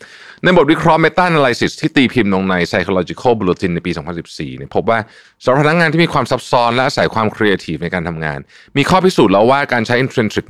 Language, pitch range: Thai, 90-125 Hz